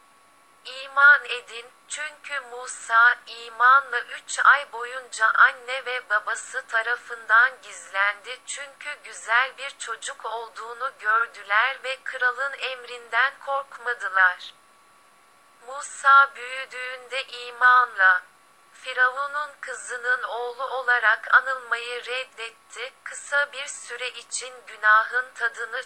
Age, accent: 30-49, Turkish